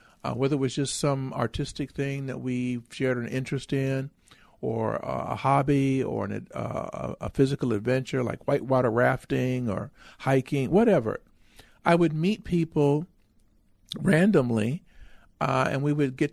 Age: 50-69